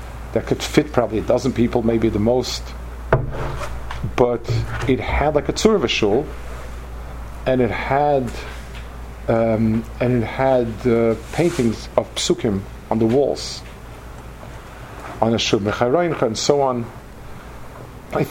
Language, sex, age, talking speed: English, male, 50-69, 120 wpm